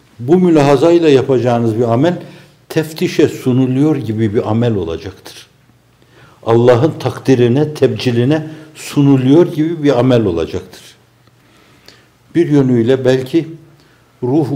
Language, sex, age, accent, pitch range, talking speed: Turkish, male, 60-79, native, 95-130 Hz, 95 wpm